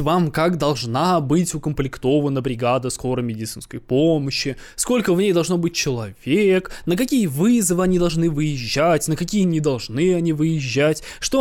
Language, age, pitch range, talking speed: Russian, 20-39, 135-185 Hz, 145 wpm